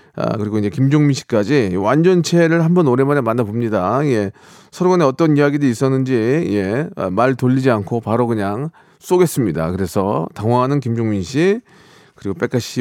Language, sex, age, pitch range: Korean, male, 40-59, 110-150 Hz